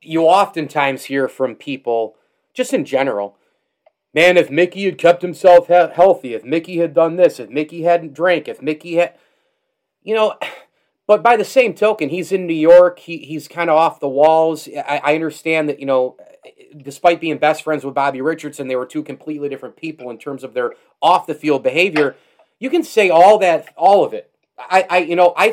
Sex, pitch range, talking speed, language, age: male, 145-195 Hz, 195 wpm, English, 30-49